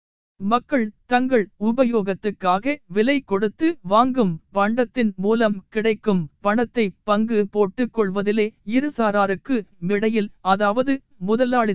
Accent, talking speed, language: native, 80 wpm, Tamil